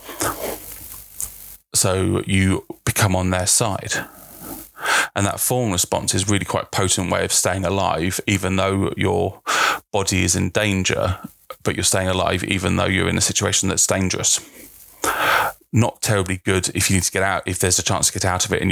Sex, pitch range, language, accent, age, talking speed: male, 95-105 Hz, English, British, 30-49, 185 wpm